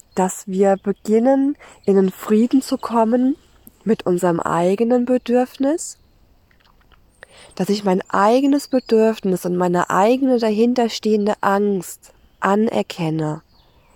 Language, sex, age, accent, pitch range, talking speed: German, female, 20-39, German, 185-235 Hz, 100 wpm